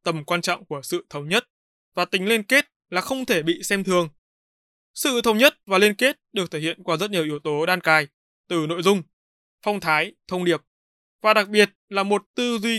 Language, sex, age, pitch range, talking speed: Vietnamese, male, 20-39, 165-220 Hz, 220 wpm